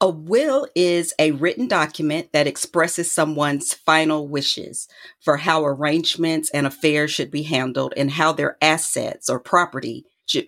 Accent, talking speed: American, 150 wpm